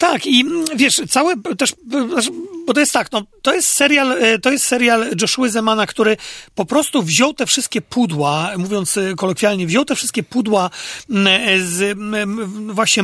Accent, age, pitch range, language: native, 40-59, 195-240 Hz, Polish